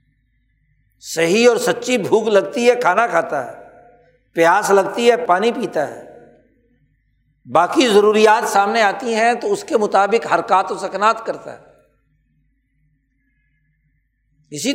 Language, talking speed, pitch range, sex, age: Urdu, 120 wpm, 150-245 Hz, male, 60-79